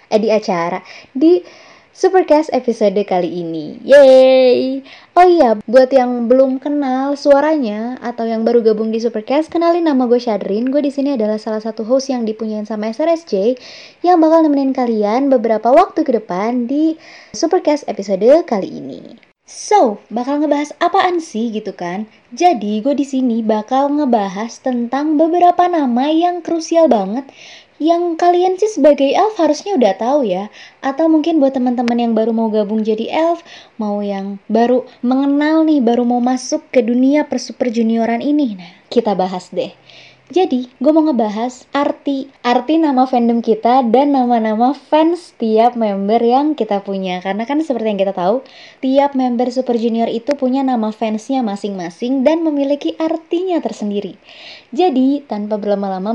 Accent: native